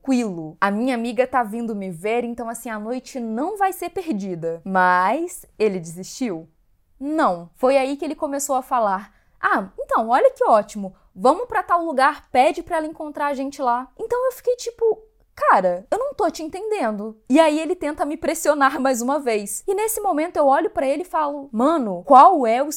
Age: 10-29